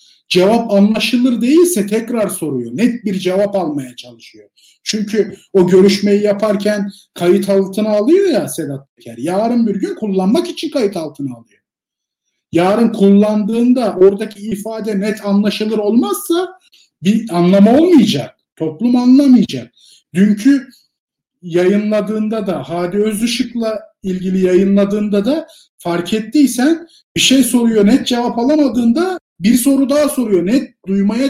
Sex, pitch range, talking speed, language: male, 185-245 Hz, 120 wpm, Turkish